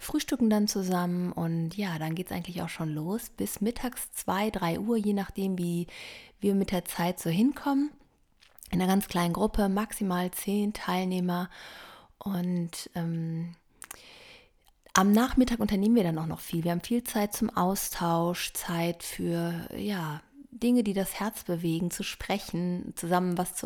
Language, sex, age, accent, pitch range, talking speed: German, female, 30-49, German, 170-220 Hz, 160 wpm